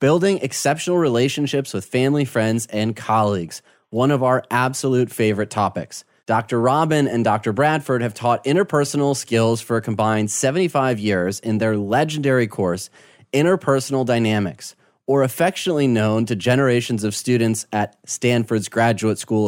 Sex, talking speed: male, 140 wpm